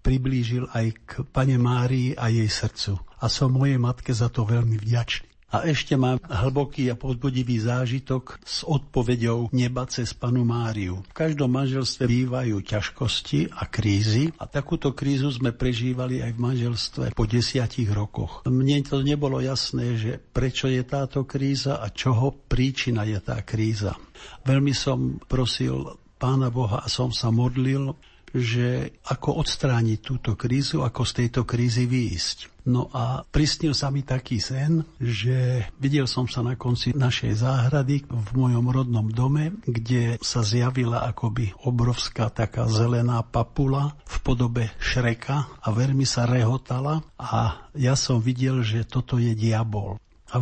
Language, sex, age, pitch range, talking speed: Slovak, male, 60-79, 115-135 Hz, 150 wpm